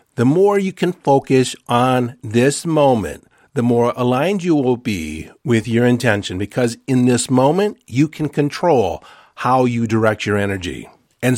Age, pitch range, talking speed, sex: 50-69, 115-140 Hz, 160 wpm, male